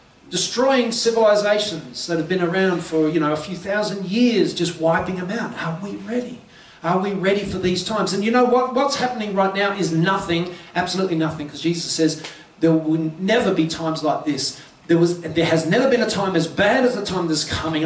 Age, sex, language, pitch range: 40-59, male, English, 170-230 Hz